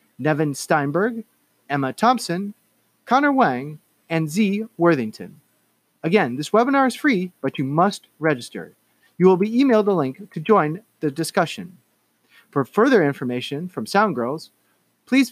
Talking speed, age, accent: 135 wpm, 30-49, American